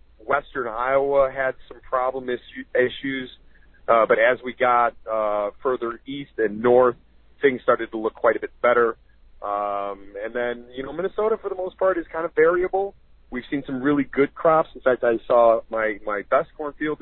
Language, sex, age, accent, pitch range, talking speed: English, male, 40-59, American, 105-145 Hz, 185 wpm